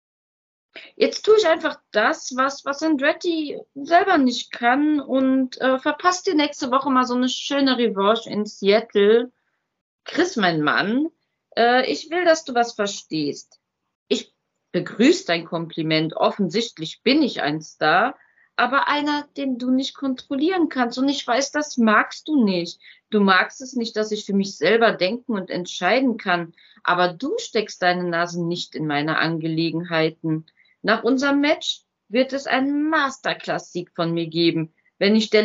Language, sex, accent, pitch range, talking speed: German, female, German, 175-270 Hz, 155 wpm